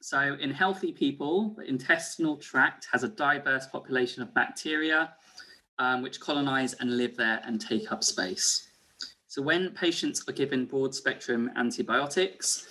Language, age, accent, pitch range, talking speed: English, 20-39, British, 120-150 Hz, 145 wpm